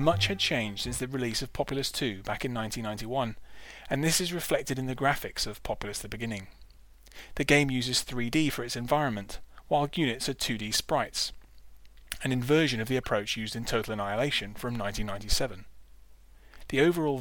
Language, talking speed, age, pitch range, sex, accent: English, 165 wpm, 30-49, 105-140 Hz, male, British